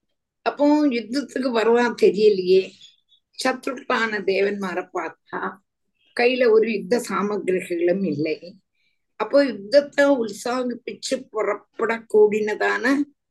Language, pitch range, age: Tamil, 185-275 Hz, 60-79